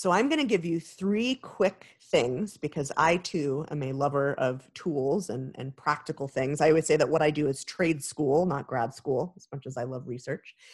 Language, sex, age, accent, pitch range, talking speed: English, female, 30-49, American, 140-215 Hz, 220 wpm